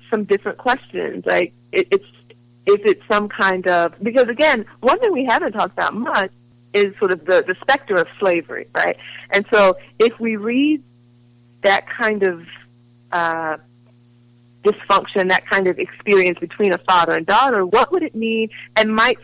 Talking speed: 165 wpm